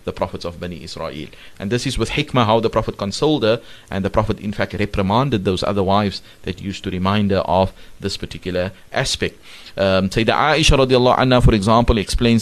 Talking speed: 200 wpm